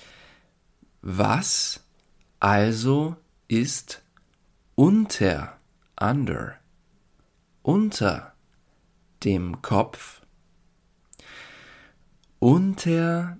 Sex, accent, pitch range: male, German, 105-165 Hz